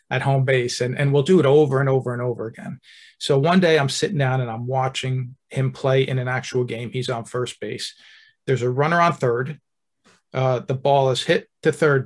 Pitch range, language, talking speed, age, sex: 130-150 Hz, English, 225 wpm, 40-59, male